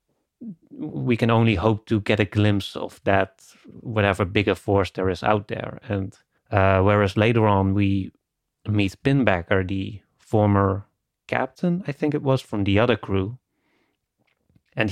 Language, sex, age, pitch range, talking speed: English, male, 30-49, 95-110 Hz, 150 wpm